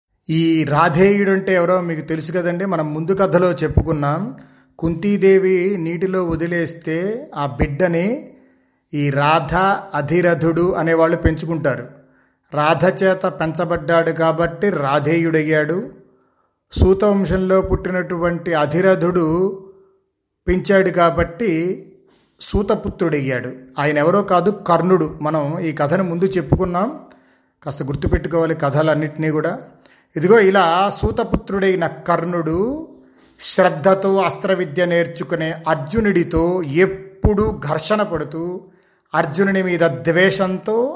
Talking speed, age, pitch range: 90 wpm, 30-49, 160-190 Hz